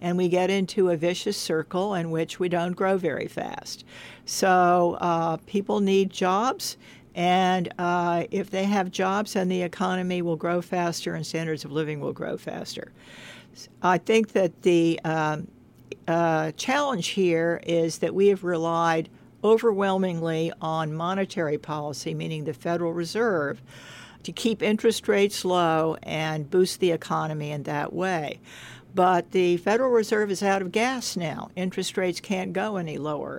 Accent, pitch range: American, 160-195 Hz